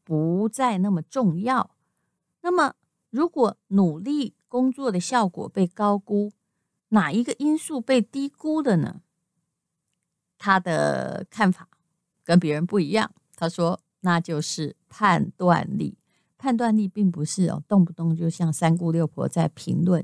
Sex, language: female, Chinese